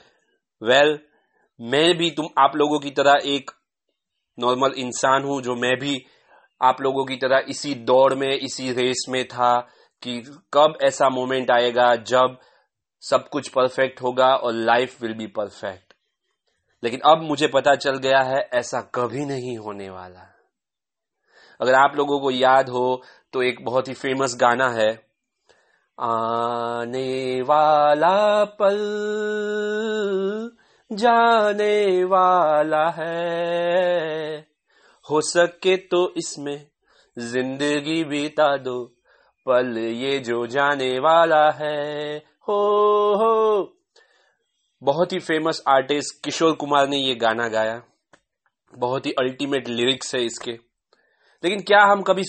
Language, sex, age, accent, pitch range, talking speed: English, male, 30-49, Indian, 125-170 Hz, 125 wpm